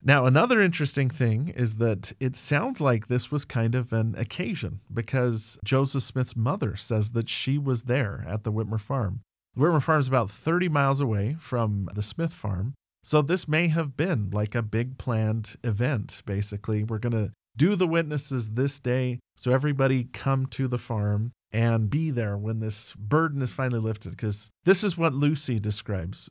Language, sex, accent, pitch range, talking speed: English, male, American, 110-140 Hz, 180 wpm